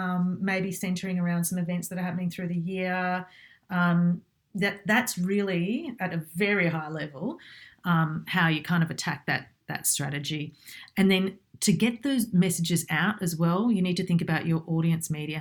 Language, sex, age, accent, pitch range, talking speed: English, female, 40-59, Australian, 160-195 Hz, 185 wpm